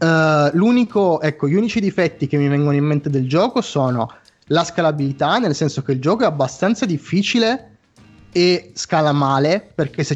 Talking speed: 165 wpm